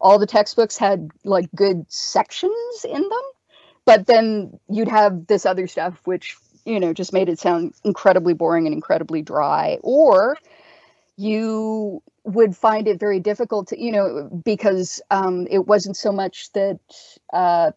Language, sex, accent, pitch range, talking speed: English, female, American, 185-260 Hz, 155 wpm